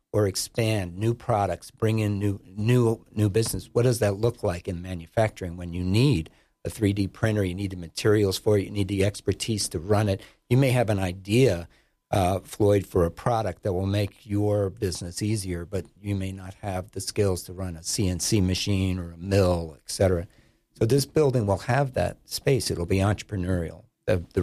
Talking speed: 200 wpm